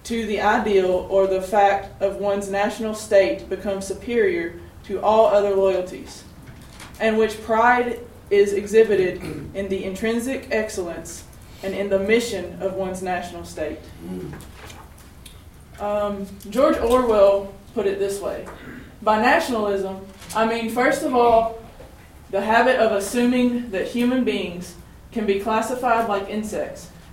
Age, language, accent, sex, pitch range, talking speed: 20-39, English, American, female, 190-230 Hz, 130 wpm